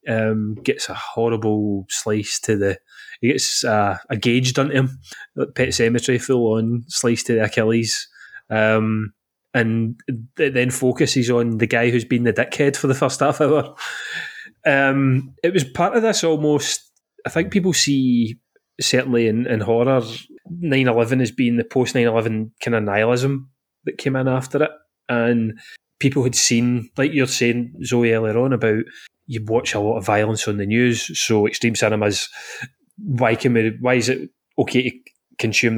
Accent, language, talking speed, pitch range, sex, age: British, English, 175 wpm, 115-130 Hz, male, 20-39